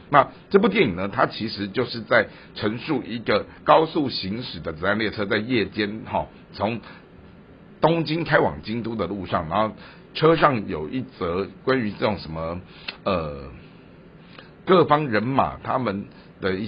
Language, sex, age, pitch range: Chinese, male, 60-79, 85-130 Hz